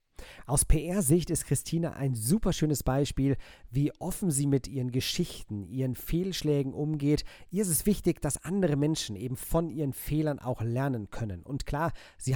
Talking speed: 165 wpm